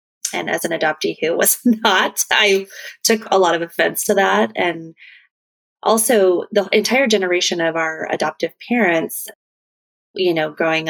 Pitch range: 160-190 Hz